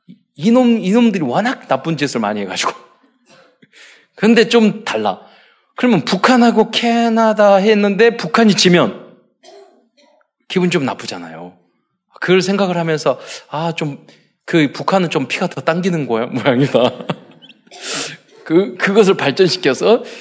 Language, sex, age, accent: Korean, male, 20-39, native